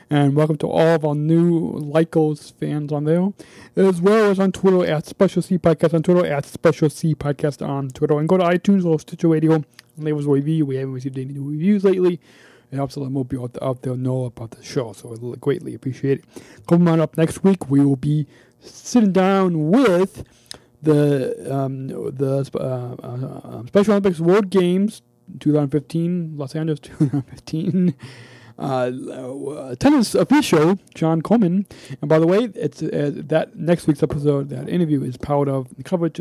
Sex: male